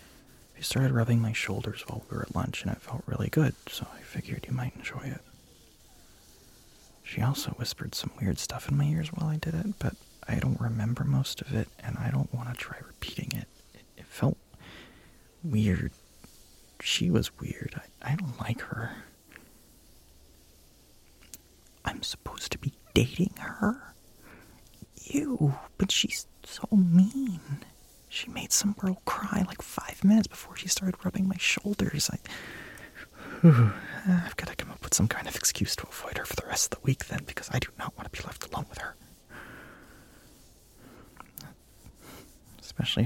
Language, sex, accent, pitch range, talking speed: English, male, American, 110-170 Hz, 170 wpm